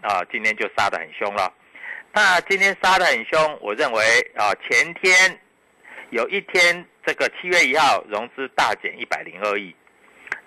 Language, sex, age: Chinese, male, 50-69